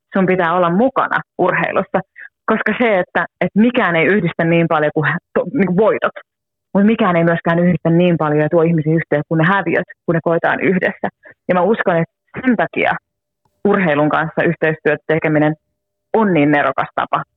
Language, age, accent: Finnish, 30-49, native